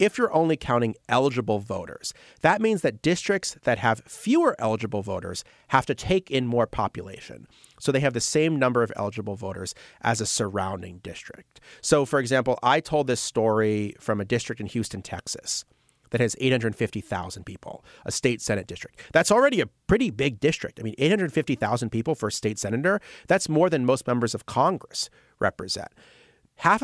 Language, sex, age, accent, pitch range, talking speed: English, male, 40-59, American, 105-140 Hz, 175 wpm